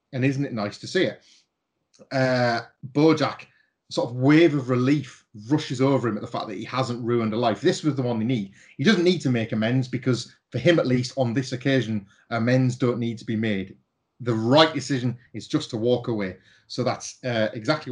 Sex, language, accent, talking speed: male, English, British, 215 wpm